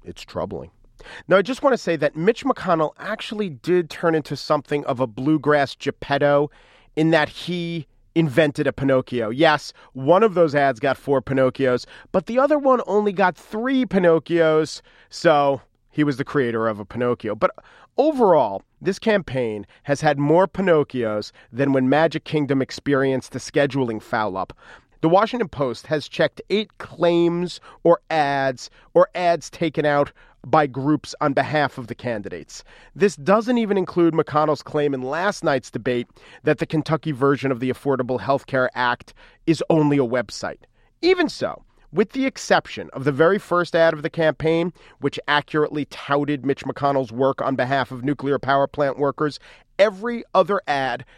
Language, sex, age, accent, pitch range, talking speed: English, male, 40-59, American, 135-185 Hz, 165 wpm